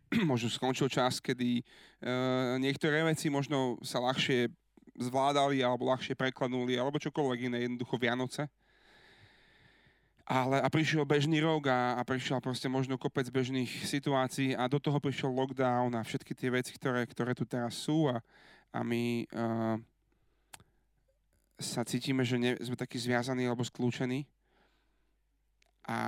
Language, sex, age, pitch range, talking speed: Slovak, male, 30-49, 120-135 Hz, 135 wpm